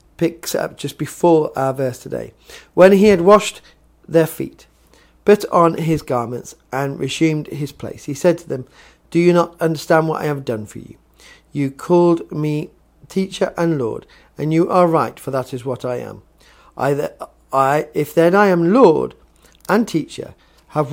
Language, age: English, 40-59